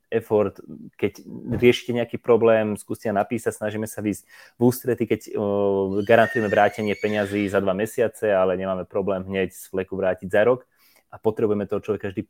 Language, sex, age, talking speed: Slovak, male, 20-39, 165 wpm